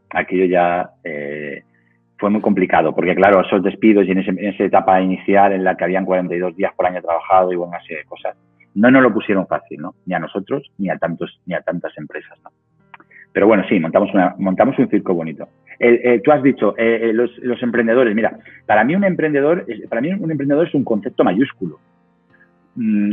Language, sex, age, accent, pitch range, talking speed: Spanish, male, 30-49, Spanish, 95-135 Hz, 210 wpm